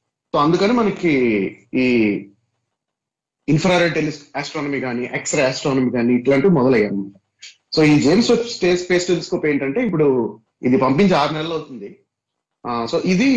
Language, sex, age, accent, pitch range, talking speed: Telugu, male, 30-49, native, 125-160 Hz, 115 wpm